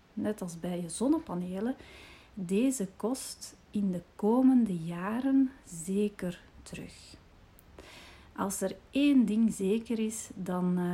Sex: female